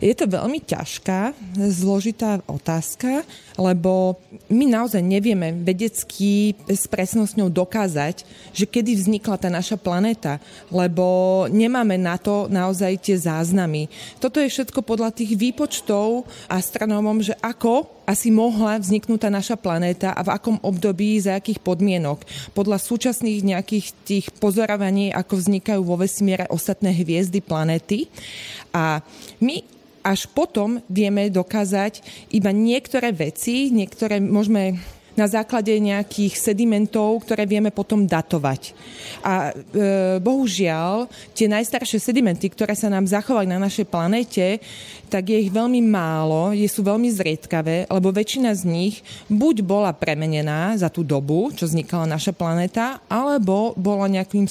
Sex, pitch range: female, 185-220 Hz